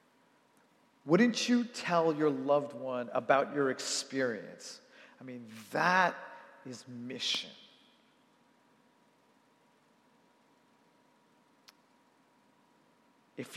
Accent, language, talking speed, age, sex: American, English, 65 wpm, 40-59, male